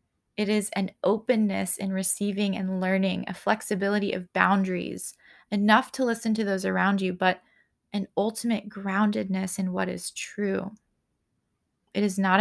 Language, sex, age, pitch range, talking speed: English, female, 20-39, 190-215 Hz, 145 wpm